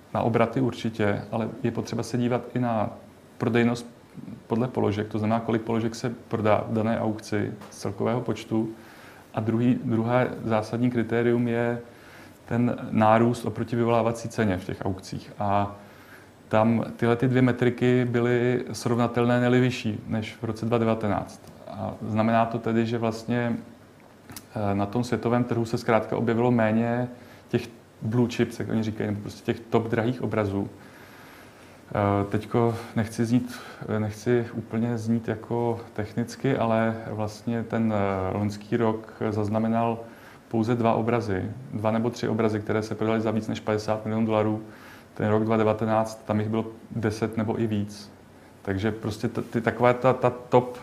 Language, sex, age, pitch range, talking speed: Czech, male, 30-49, 110-120 Hz, 150 wpm